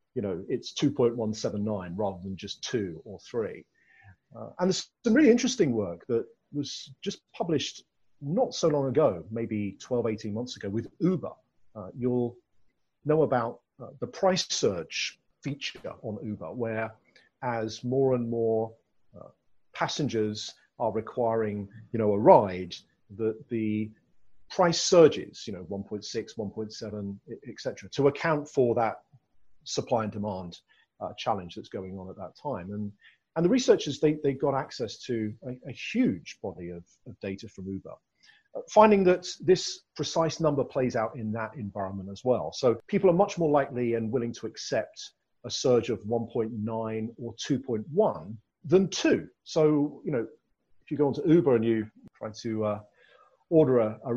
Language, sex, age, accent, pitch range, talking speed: English, male, 40-59, British, 105-150 Hz, 160 wpm